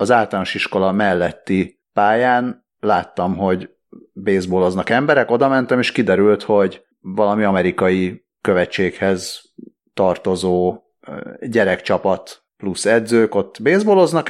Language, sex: Hungarian, male